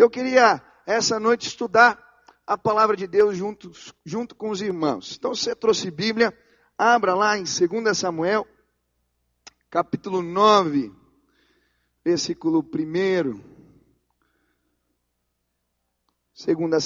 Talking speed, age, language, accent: 105 wpm, 40-59, Portuguese, Brazilian